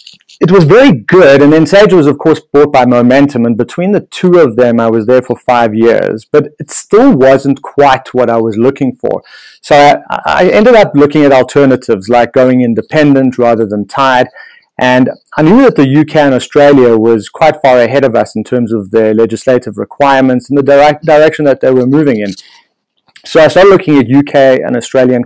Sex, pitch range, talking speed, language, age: male, 120-145 Hz, 205 wpm, English, 30-49